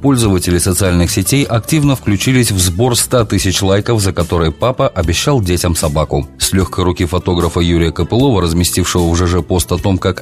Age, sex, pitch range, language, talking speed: 30-49, male, 90-110 Hz, Russian, 170 wpm